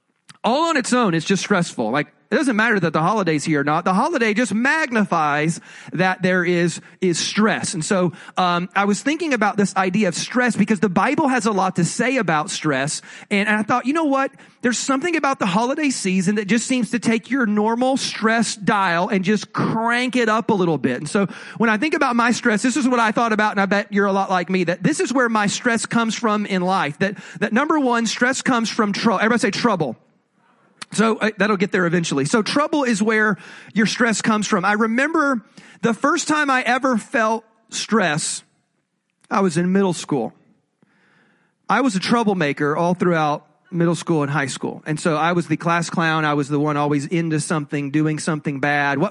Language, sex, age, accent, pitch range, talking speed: English, male, 40-59, American, 175-235 Hz, 215 wpm